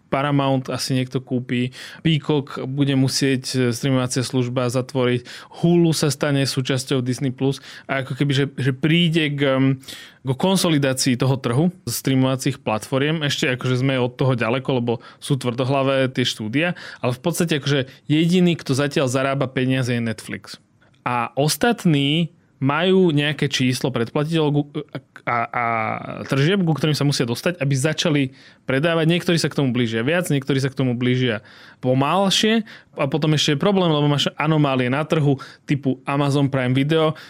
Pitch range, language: 130-145 Hz, Slovak